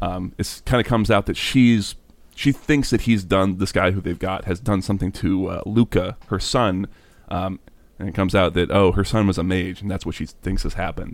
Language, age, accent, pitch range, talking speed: English, 30-49, American, 95-105 Hz, 240 wpm